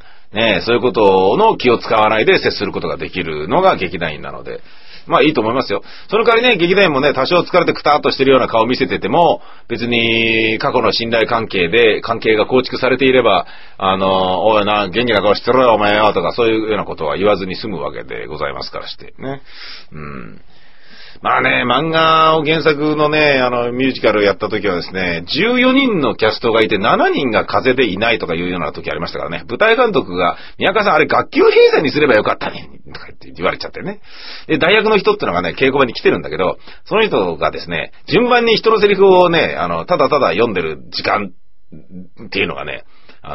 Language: Japanese